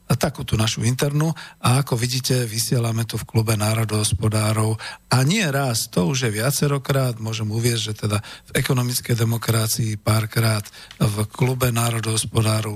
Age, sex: 50-69, male